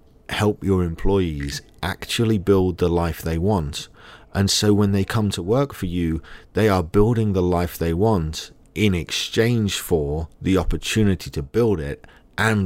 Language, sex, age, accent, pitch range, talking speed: English, male, 40-59, British, 80-105 Hz, 160 wpm